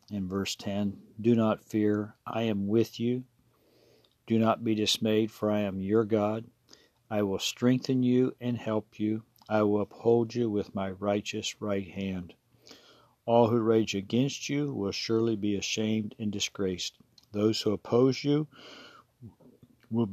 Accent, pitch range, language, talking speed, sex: American, 100-120 Hz, English, 150 wpm, male